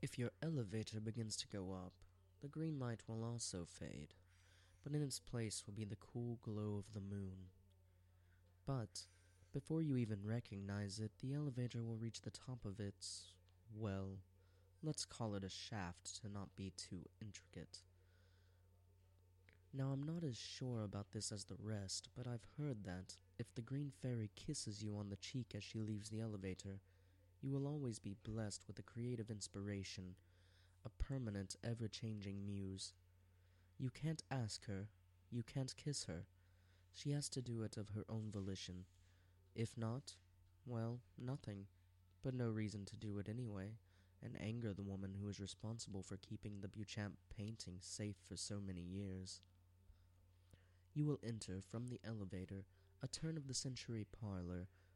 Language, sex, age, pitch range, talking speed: English, male, 20-39, 90-115 Hz, 160 wpm